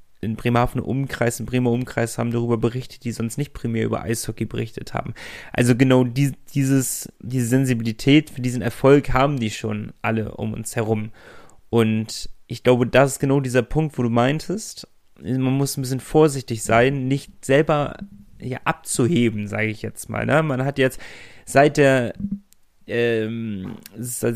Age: 30-49